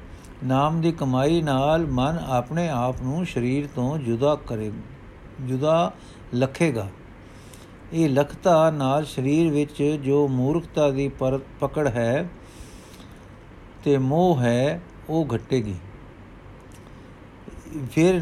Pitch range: 115-165 Hz